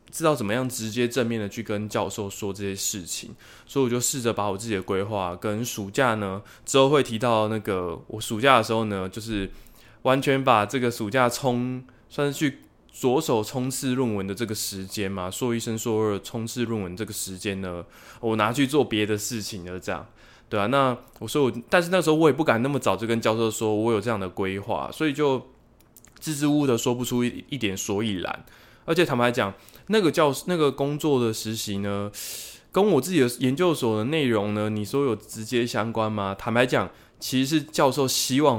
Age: 20-39